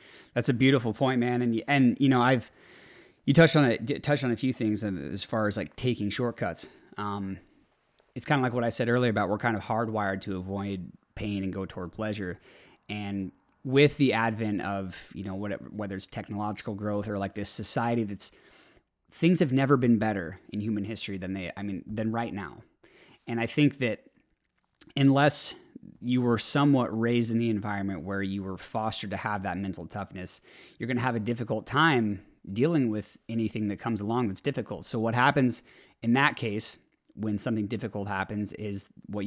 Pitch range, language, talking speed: 100-125 Hz, English, 195 wpm